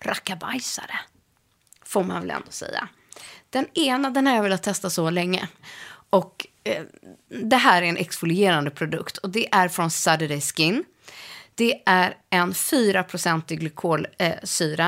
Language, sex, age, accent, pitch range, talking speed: Swedish, female, 30-49, native, 165-220 Hz, 140 wpm